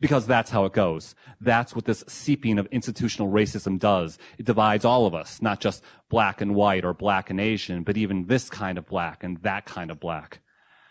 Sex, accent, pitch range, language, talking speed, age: male, American, 95-135 Hz, English, 210 wpm, 30-49